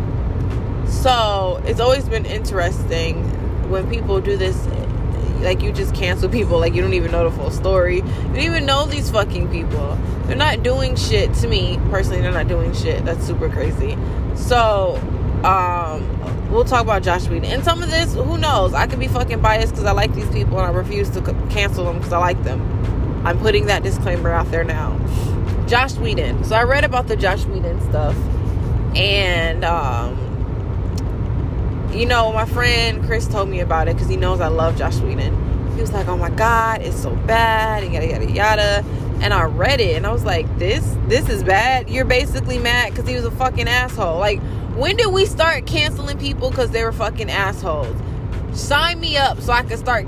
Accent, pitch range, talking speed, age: American, 95-115 Hz, 200 wpm, 20-39